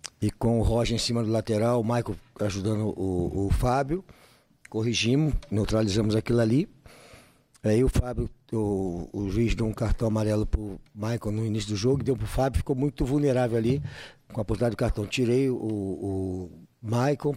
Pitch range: 105-125 Hz